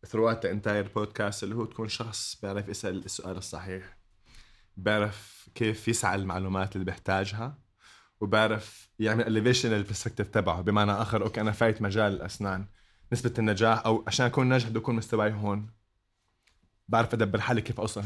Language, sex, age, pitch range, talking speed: Arabic, male, 20-39, 100-120 Hz, 150 wpm